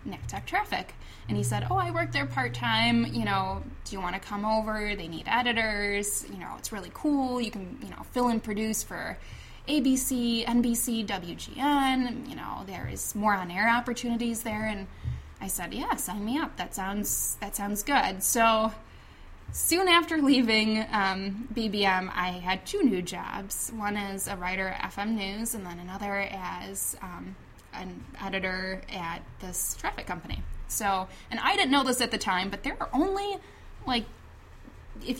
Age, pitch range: 10-29, 190-240 Hz